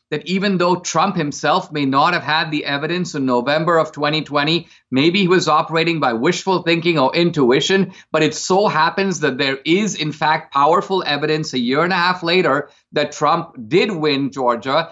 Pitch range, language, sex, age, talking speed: 150-185 Hz, English, male, 50-69, 185 wpm